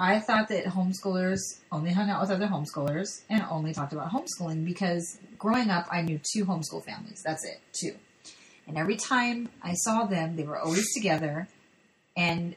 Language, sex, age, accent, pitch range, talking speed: English, female, 30-49, American, 160-195 Hz, 175 wpm